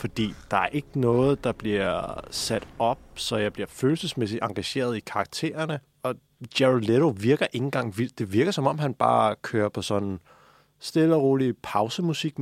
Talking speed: 180 wpm